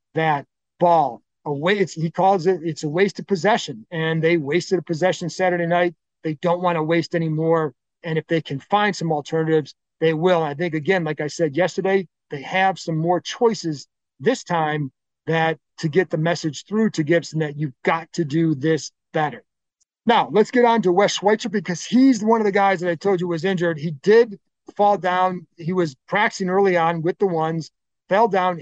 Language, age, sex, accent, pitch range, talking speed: English, 40-59, male, American, 160-195 Hz, 205 wpm